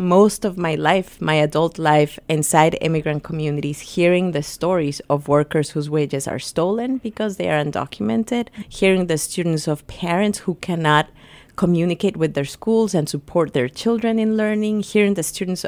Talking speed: 165 wpm